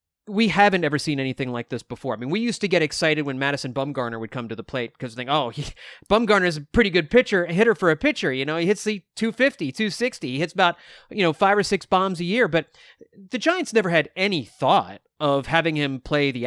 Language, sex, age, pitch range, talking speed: English, male, 30-49, 140-205 Hz, 245 wpm